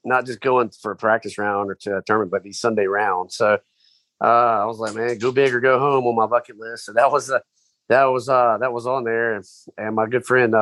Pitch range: 100-125 Hz